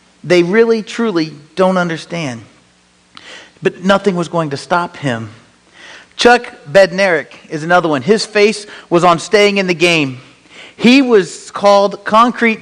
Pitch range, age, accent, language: 150-205 Hz, 40-59, American, English